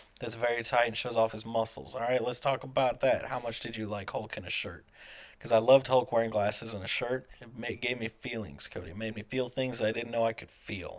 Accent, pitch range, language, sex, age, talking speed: American, 110-130 Hz, English, male, 30-49, 275 wpm